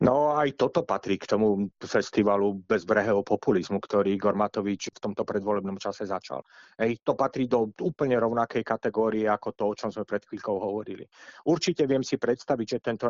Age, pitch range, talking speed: 30-49, 110-130 Hz, 170 wpm